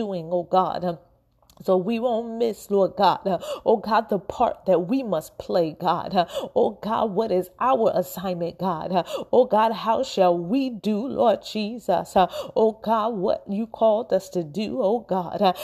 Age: 30-49